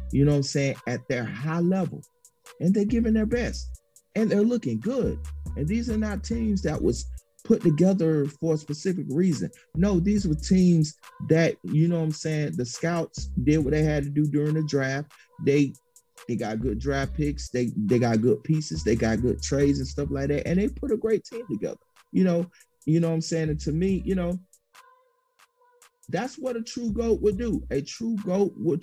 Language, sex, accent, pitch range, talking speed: English, male, American, 140-185 Hz, 210 wpm